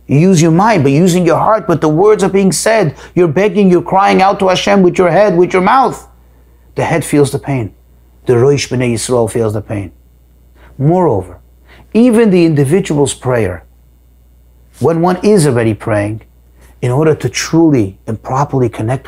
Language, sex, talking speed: English, male, 175 wpm